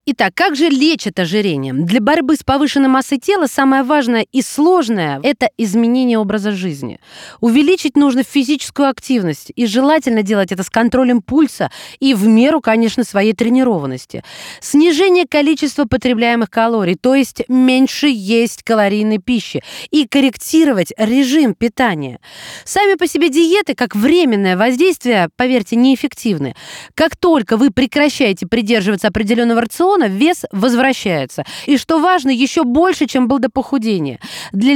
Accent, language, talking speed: native, Russian, 135 wpm